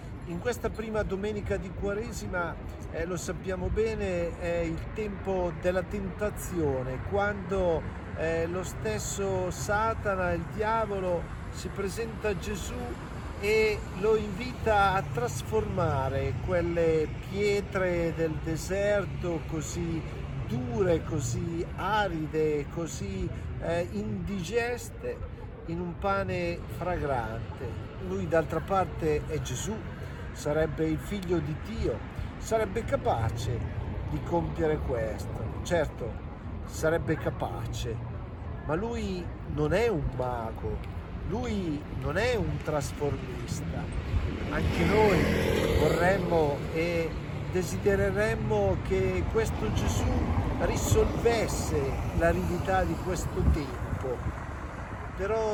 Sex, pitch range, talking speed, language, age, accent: male, 110-175 Hz, 95 wpm, Italian, 50-69, native